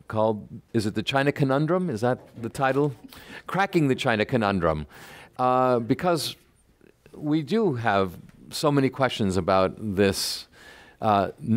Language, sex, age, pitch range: Chinese, male, 50-69, 105-145 Hz